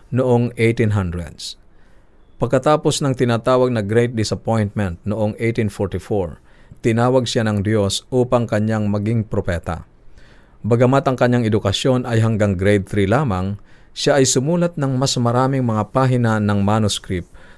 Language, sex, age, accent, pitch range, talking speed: Filipino, male, 50-69, native, 100-120 Hz, 125 wpm